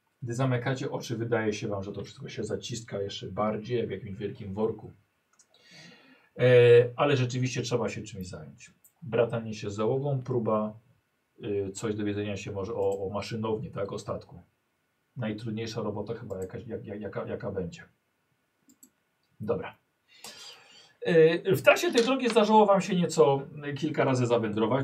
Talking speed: 145 wpm